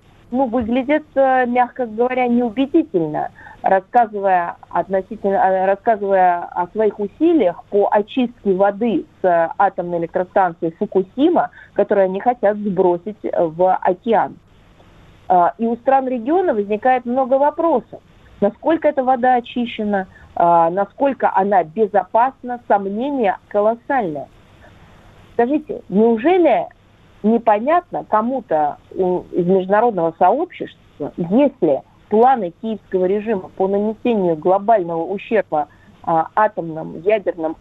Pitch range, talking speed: 190-255 Hz, 90 wpm